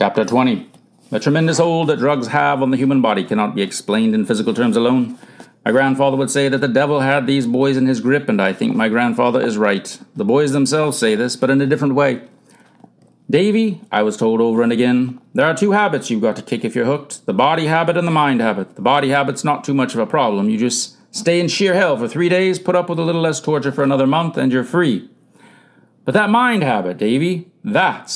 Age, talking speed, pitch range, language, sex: 40-59, 235 wpm, 135-185 Hz, English, male